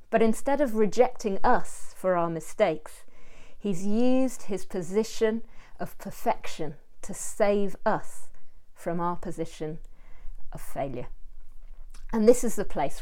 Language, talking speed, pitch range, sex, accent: English, 125 wpm, 165-215 Hz, female, British